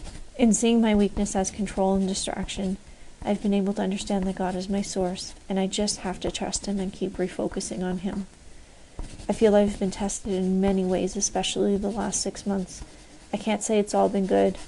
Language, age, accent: English, 30-49, American